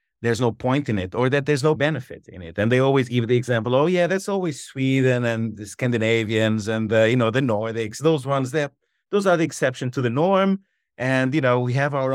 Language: English